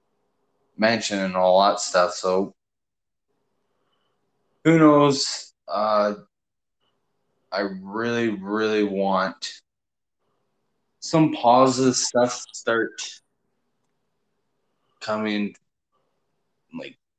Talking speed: 70 wpm